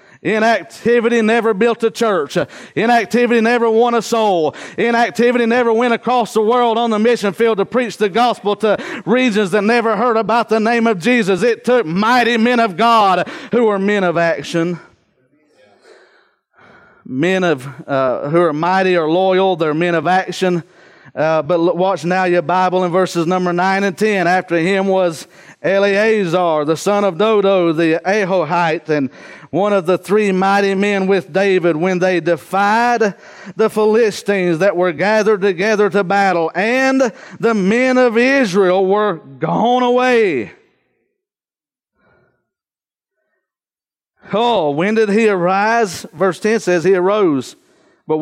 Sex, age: male, 40-59